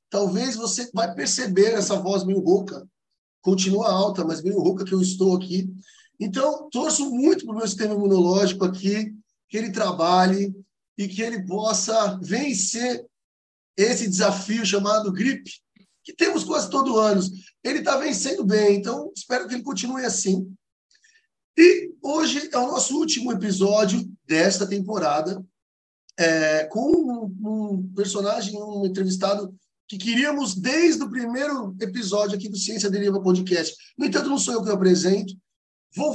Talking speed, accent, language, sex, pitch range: 145 wpm, Brazilian, Portuguese, male, 195-230 Hz